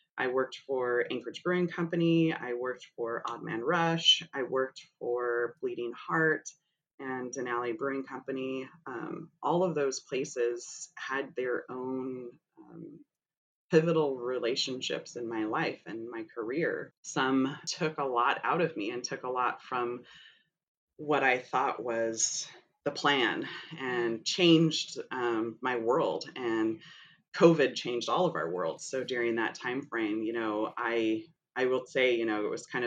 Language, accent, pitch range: English, American, 120-155 Hz